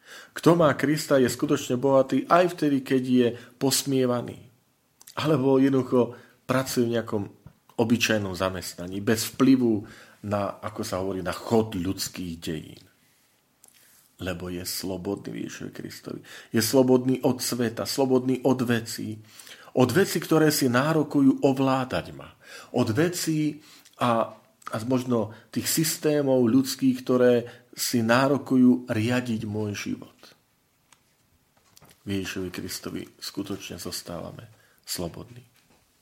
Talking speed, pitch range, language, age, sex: 110 wpm, 105-135 Hz, Slovak, 40-59, male